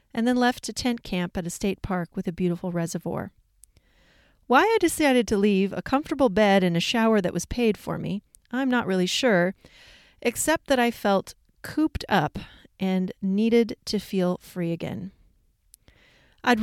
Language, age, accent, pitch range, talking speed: English, 30-49, American, 185-235 Hz, 170 wpm